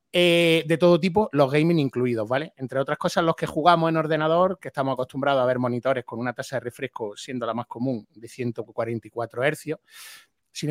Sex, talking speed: male, 195 wpm